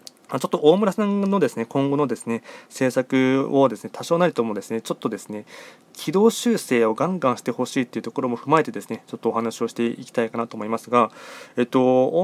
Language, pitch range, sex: Japanese, 115-160 Hz, male